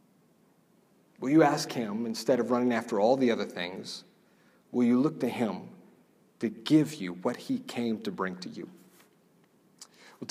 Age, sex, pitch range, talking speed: 40-59, male, 145-180 Hz, 165 wpm